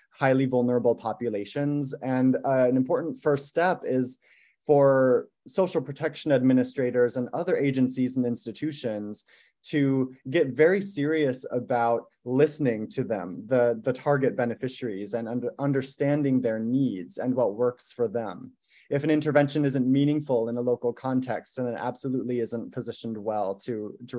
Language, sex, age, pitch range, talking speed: English, male, 20-39, 120-145 Hz, 140 wpm